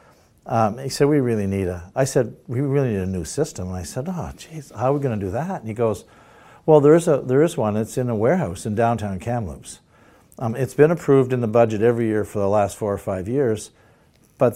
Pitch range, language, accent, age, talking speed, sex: 110-140 Hz, English, American, 60-79, 245 wpm, male